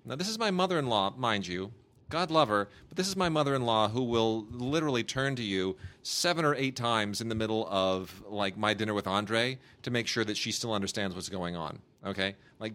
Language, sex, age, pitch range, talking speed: English, male, 30-49, 110-140 Hz, 215 wpm